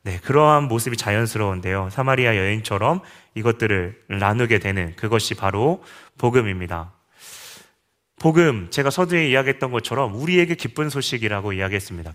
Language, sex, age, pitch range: Korean, male, 30-49, 100-135 Hz